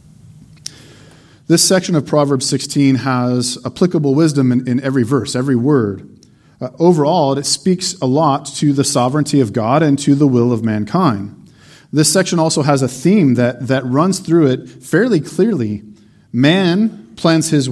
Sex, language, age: male, English, 40-59